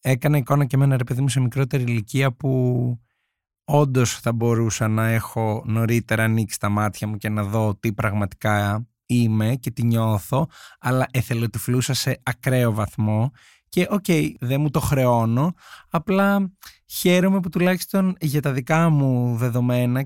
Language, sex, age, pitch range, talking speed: Greek, male, 20-39, 115-150 Hz, 155 wpm